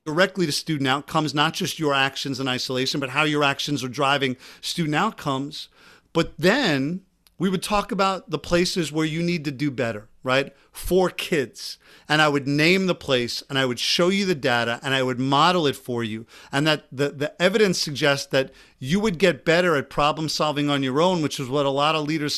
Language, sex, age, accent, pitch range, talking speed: English, male, 50-69, American, 140-185 Hz, 210 wpm